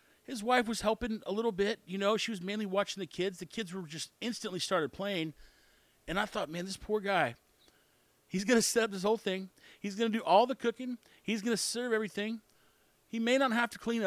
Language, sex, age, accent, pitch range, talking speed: English, male, 40-59, American, 185-230 Hz, 235 wpm